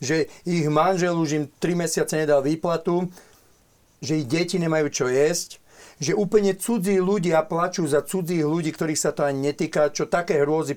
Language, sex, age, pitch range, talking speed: Slovak, male, 50-69, 145-200 Hz, 175 wpm